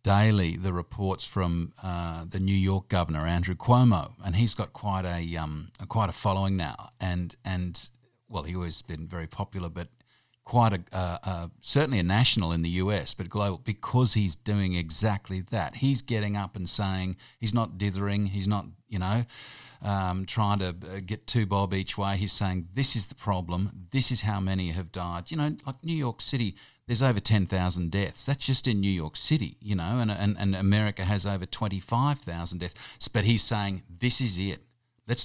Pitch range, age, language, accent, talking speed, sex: 90-115 Hz, 50-69, English, Australian, 190 wpm, male